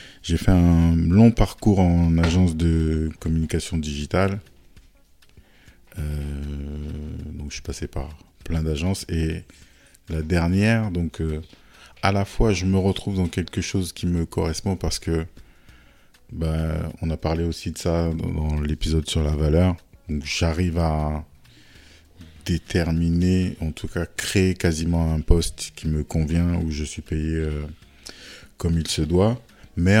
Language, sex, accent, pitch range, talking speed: French, male, French, 80-95 Hz, 145 wpm